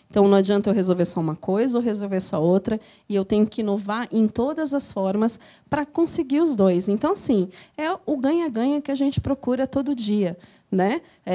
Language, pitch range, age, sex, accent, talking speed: Portuguese, 210-275 Hz, 30-49, female, Brazilian, 195 wpm